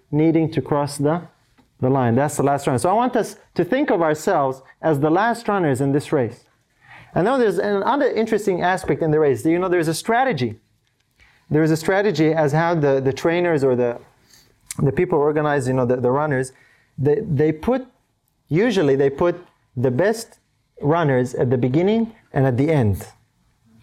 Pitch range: 130-180 Hz